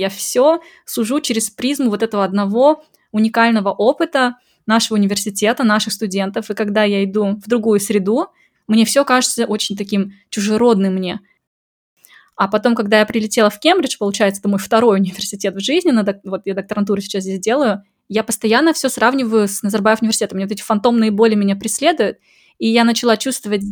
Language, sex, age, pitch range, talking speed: Russian, female, 20-39, 205-235 Hz, 165 wpm